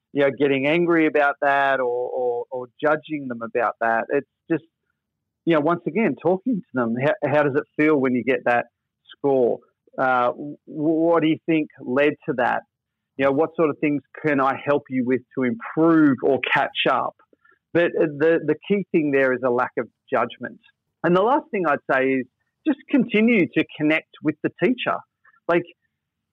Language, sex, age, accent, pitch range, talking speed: English, male, 40-59, Australian, 130-165 Hz, 185 wpm